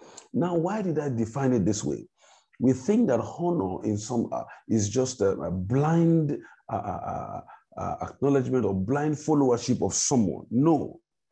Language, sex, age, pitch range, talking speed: English, male, 50-69, 105-140 Hz, 160 wpm